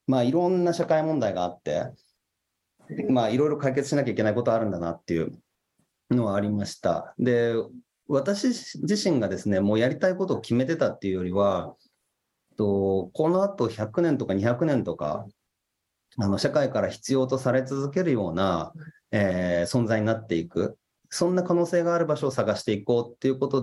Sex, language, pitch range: male, Japanese, 100-145 Hz